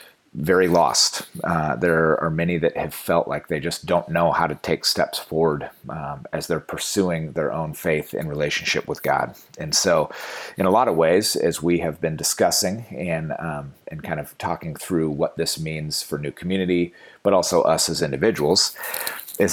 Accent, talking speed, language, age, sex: American, 185 wpm, English, 30-49, male